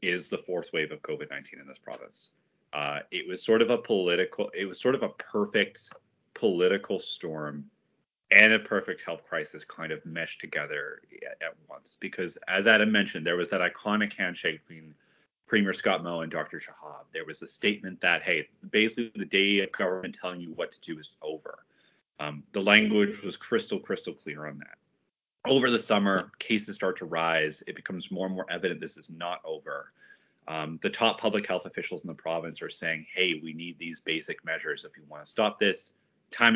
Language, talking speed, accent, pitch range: English, 195 wpm, American, 80-115 Hz